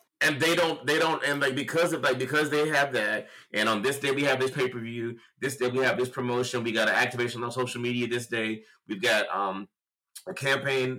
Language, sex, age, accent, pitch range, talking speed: English, male, 30-49, American, 115-145 Hz, 230 wpm